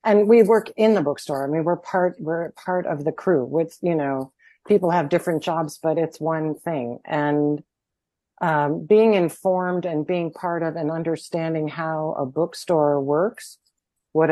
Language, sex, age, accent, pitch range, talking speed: English, female, 40-59, American, 145-180 Hz, 170 wpm